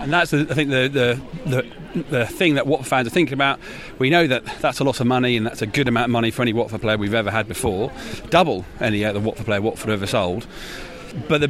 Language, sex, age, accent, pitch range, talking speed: English, male, 40-59, British, 115-145 Hz, 255 wpm